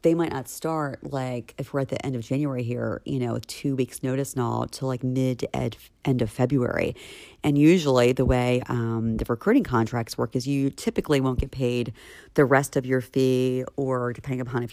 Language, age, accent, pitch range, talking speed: English, 40-59, American, 120-145 Hz, 210 wpm